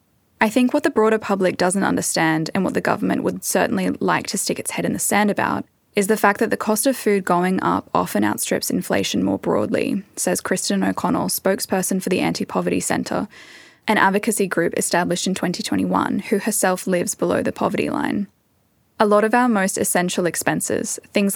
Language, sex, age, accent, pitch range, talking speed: English, female, 10-29, Australian, 180-225 Hz, 190 wpm